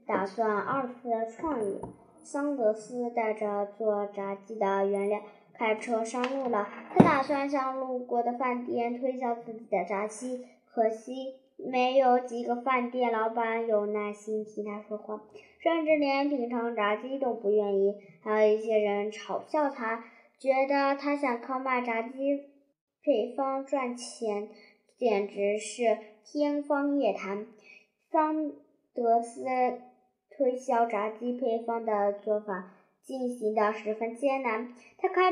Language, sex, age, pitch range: Chinese, male, 10-29, 210-260 Hz